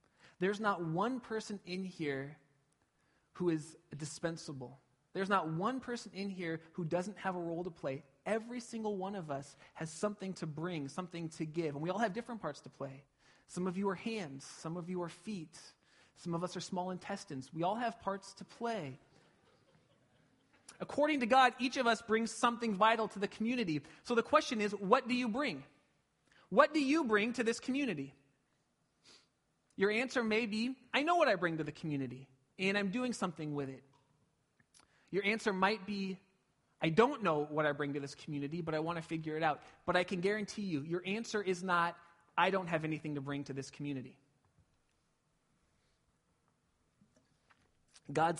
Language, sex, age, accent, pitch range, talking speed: English, male, 30-49, American, 150-205 Hz, 185 wpm